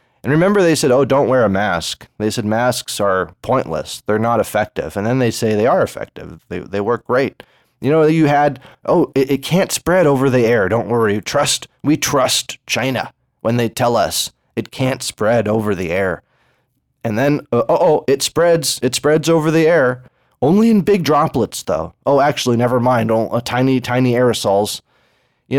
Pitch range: 115-140 Hz